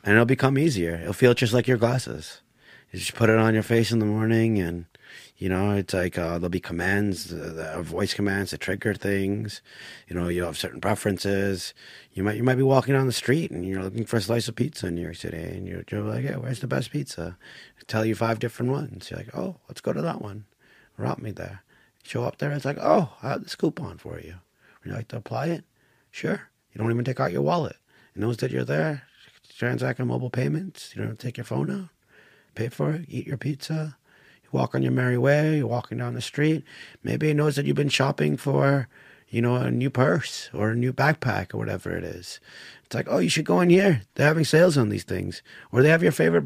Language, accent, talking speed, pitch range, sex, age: English, American, 245 wpm, 100-135 Hz, male, 30-49